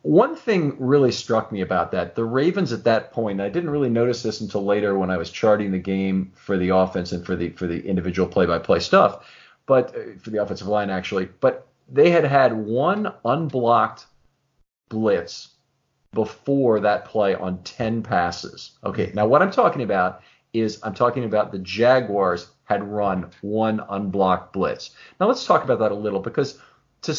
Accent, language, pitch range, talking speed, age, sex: American, English, 100-130 Hz, 185 wpm, 40-59, male